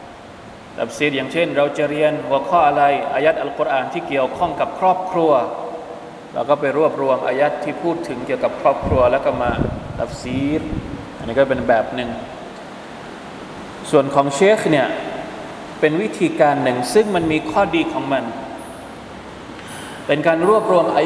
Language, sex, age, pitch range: Thai, male, 20-39, 140-185 Hz